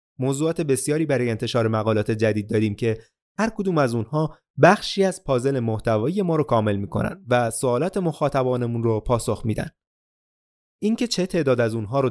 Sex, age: male, 30-49